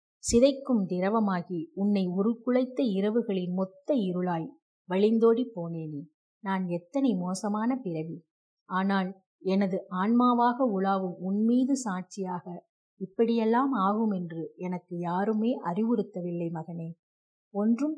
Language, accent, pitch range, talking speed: Tamil, native, 185-245 Hz, 90 wpm